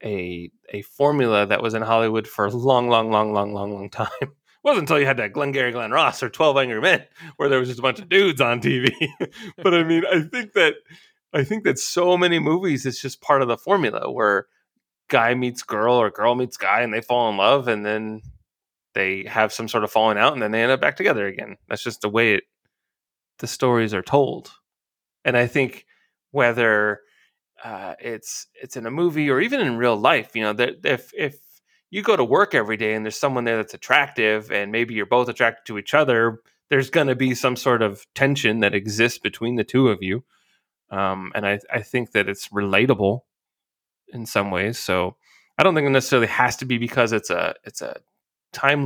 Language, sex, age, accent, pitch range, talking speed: English, male, 20-39, American, 105-135 Hz, 215 wpm